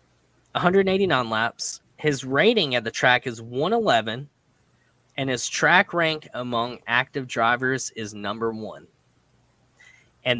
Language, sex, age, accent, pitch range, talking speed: English, male, 10-29, American, 120-155 Hz, 115 wpm